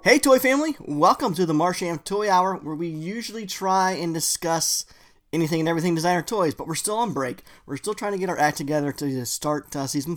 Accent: American